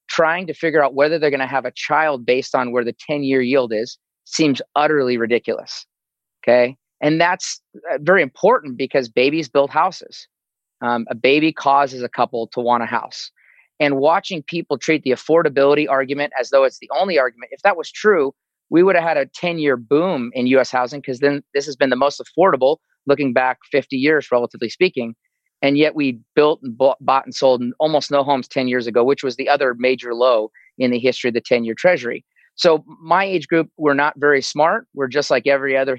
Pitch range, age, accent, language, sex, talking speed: 125-150 Hz, 30-49, American, English, male, 205 wpm